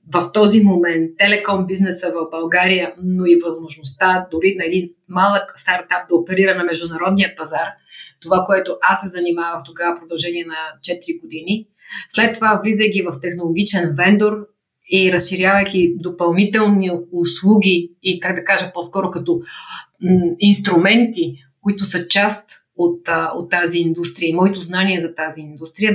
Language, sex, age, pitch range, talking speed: Bulgarian, female, 30-49, 170-195 Hz, 145 wpm